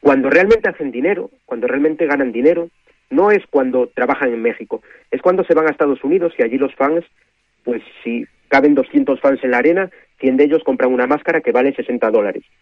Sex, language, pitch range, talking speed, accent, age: male, Spanish, 130-170 Hz, 205 wpm, Spanish, 40-59